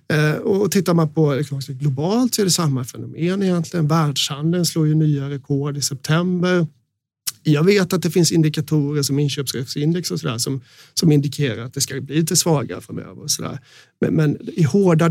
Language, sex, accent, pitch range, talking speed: Swedish, male, native, 140-175 Hz, 180 wpm